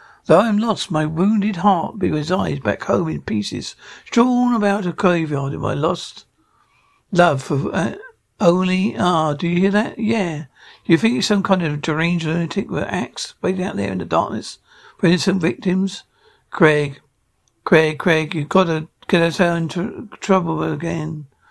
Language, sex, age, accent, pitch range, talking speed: English, male, 60-79, British, 165-200 Hz, 185 wpm